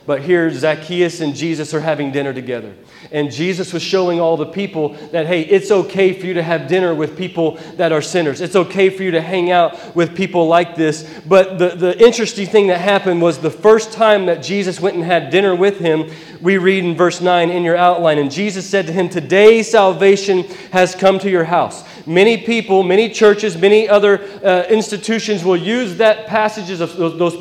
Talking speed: 205 wpm